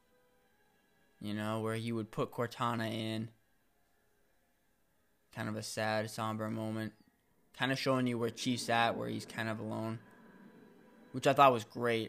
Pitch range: 115-145 Hz